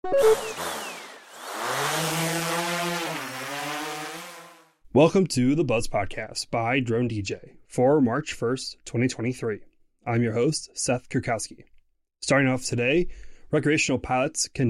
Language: English